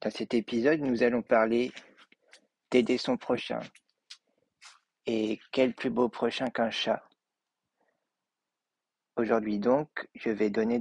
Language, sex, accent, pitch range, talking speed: French, male, French, 110-125 Hz, 115 wpm